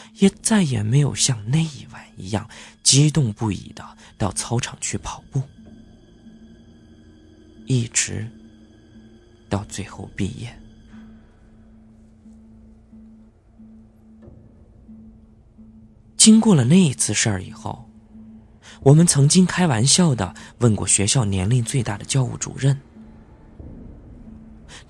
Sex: male